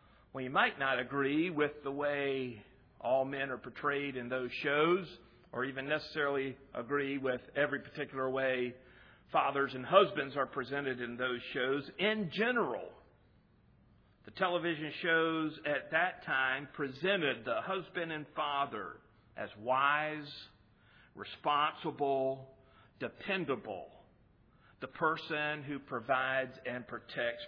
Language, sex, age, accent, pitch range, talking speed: English, male, 50-69, American, 125-150 Hz, 115 wpm